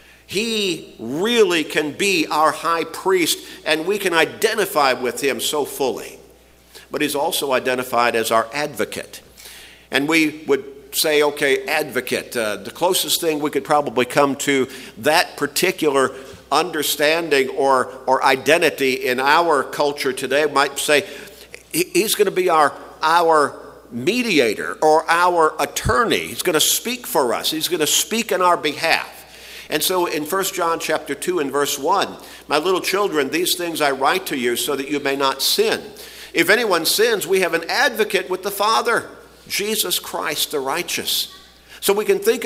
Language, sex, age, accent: English, male, 50-69, American